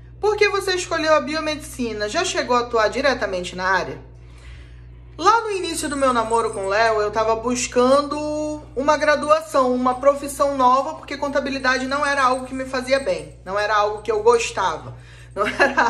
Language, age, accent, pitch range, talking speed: Portuguese, 20-39, Brazilian, 225-300 Hz, 175 wpm